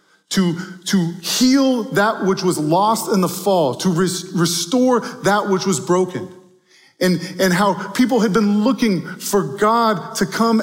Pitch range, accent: 170-210 Hz, American